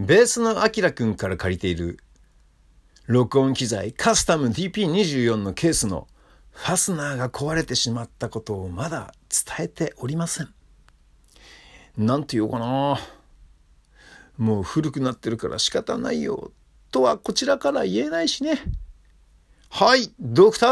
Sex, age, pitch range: male, 50-69, 105-175 Hz